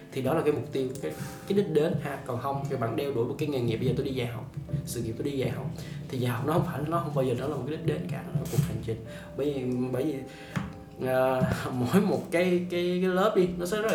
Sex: male